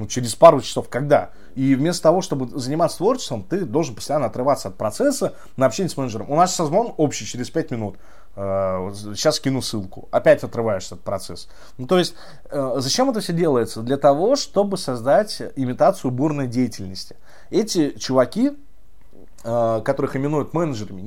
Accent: native